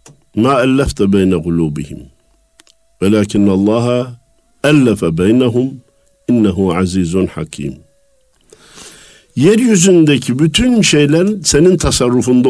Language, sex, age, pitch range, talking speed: Turkish, male, 50-69, 95-135 Hz, 70 wpm